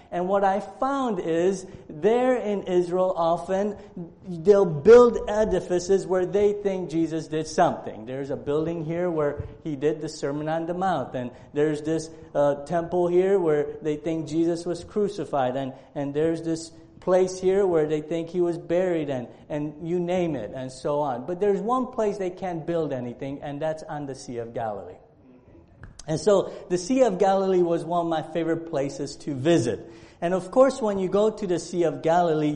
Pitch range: 155-195 Hz